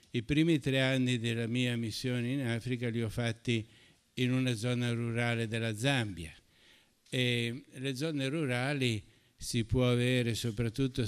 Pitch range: 110-125 Hz